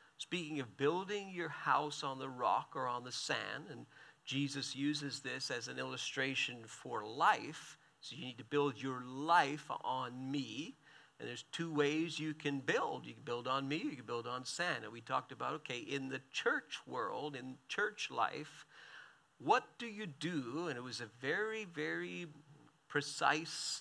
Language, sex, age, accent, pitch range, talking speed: English, male, 50-69, American, 130-150 Hz, 175 wpm